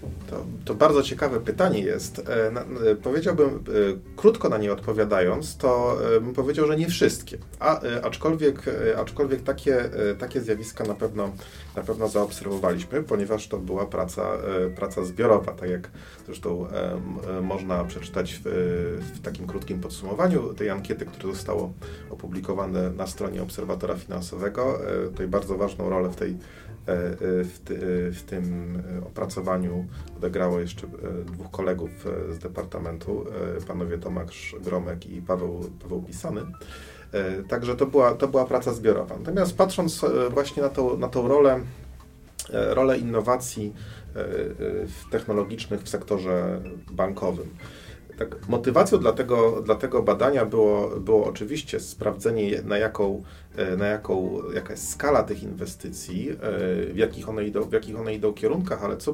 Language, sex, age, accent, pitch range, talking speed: Polish, male, 30-49, native, 90-125 Hz, 140 wpm